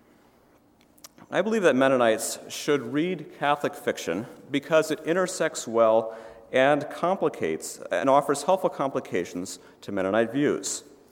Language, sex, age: English, male, 40-59